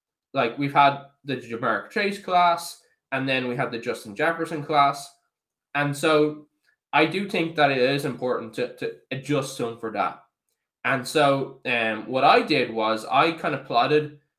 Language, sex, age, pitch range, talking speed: English, male, 10-29, 125-160 Hz, 175 wpm